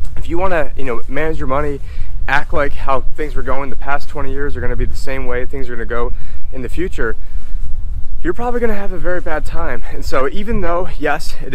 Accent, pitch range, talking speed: American, 125-155 Hz, 240 wpm